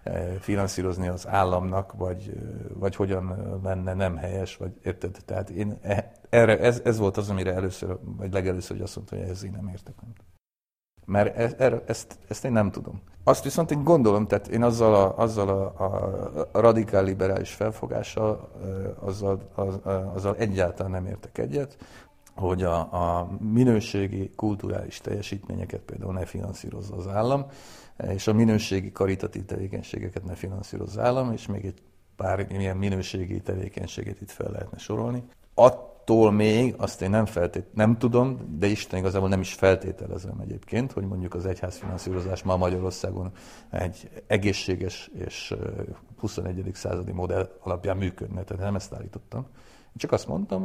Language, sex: Hungarian, male